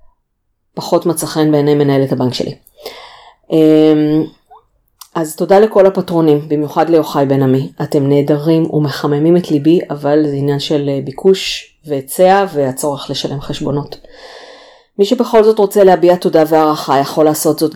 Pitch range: 145-190 Hz